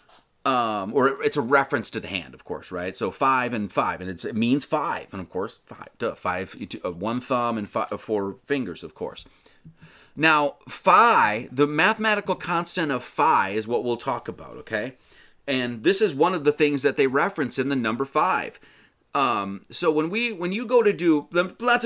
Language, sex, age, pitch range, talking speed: English, male, 30-49, 130-195 Hz, 195 wpm